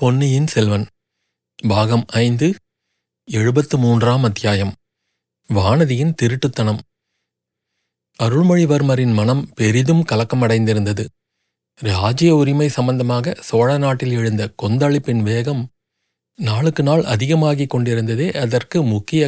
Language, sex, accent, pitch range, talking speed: Tamil, male, native, 115-150 Hz, 80 wpm